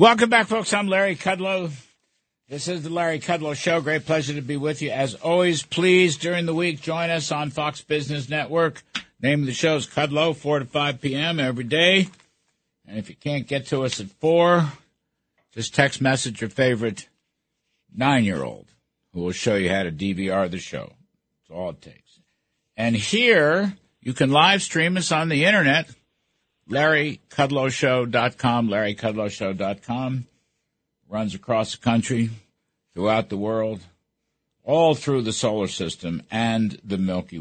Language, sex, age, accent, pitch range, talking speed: English, male, 60-79, American, 110-160 Hz, 155 wpm